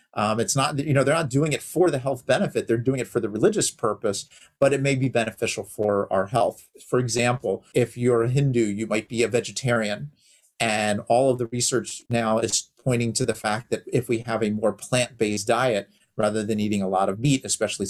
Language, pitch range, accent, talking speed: English, 105-130 Hz, American, 220 wpm